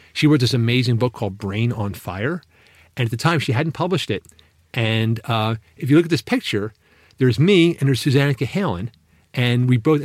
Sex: male